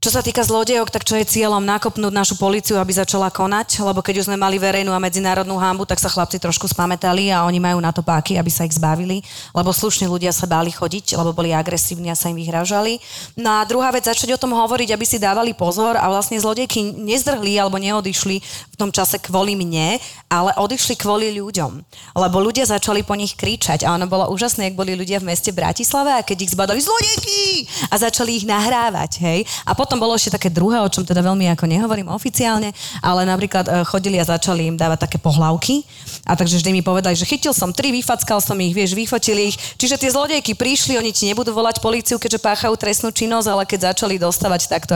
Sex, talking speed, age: female, 210 wpm, 30-49